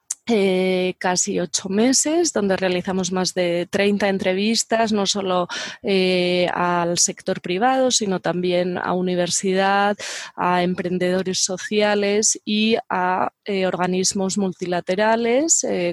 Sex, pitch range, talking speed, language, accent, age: female, 180-210 Hz, 110 wpm, Spanish, Spanish, 20-39